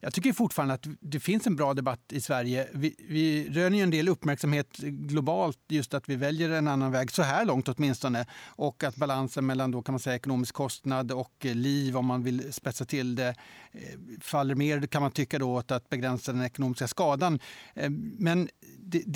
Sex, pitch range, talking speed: male, 135-170 Hz, 195 wpm